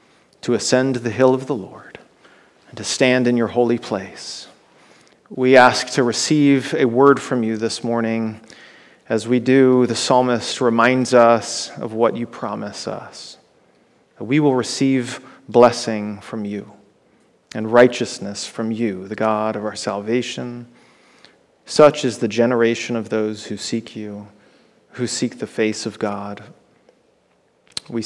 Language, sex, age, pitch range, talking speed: English, male, 40-59, 115-140 Hz, 145 wpm